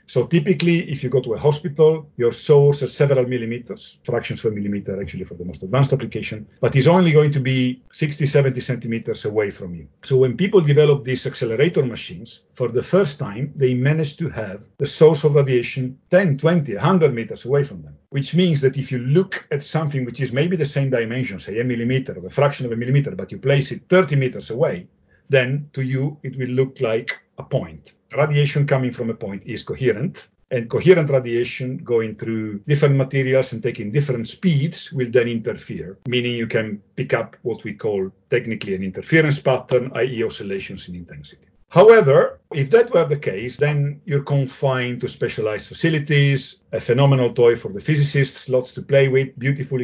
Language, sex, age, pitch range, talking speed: English, male, 50-69, 120-145 Hz, 190 wpm